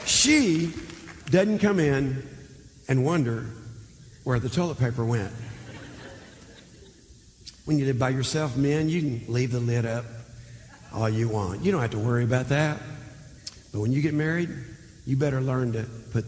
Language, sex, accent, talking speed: English, male, American, 160 wpm